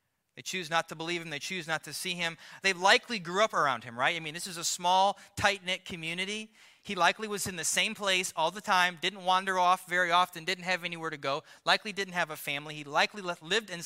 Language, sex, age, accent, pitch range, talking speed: English, male, 30-49, American, 130-180 Hz, 245 wpm